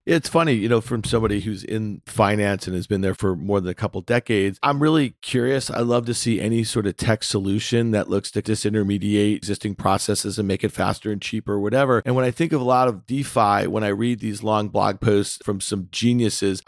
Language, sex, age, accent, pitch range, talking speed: English, male, 40-59, American, 100-130 Hz, 230 wpm